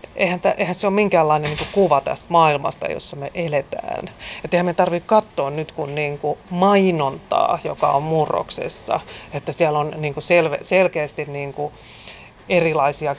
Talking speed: 110 wpm